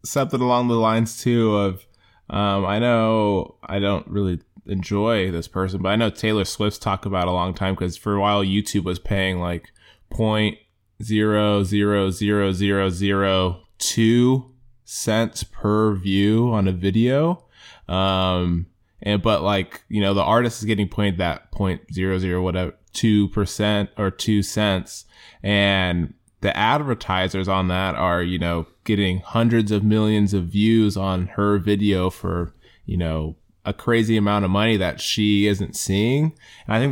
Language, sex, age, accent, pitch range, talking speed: English, male, 20-39, American, 95-110 Hz, 150 wpm